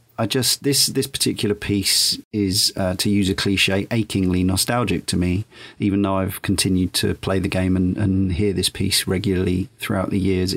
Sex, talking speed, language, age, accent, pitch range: male, 185 wpm, English, 40-59, British, 95-115 Hz